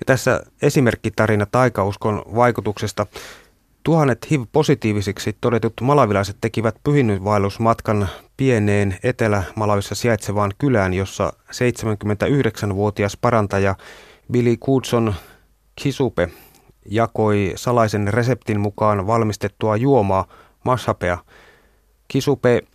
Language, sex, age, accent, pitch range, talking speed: Finnish, male, 30-49, native, 105-125 Hz, 80 wpm